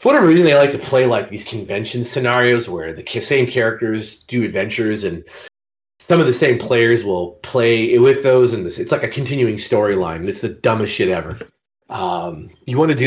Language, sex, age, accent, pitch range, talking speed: English, male, 30-49, American, 105-140 Hz, 200 wpm